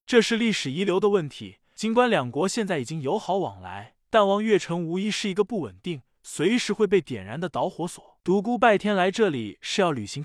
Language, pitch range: Chinese, 150-210 Hz